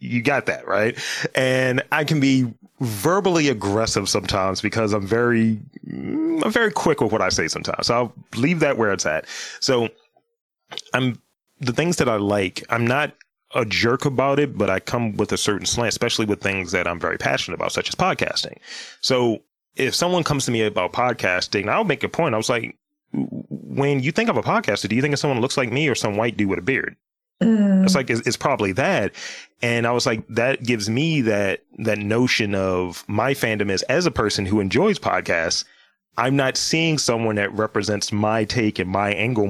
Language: English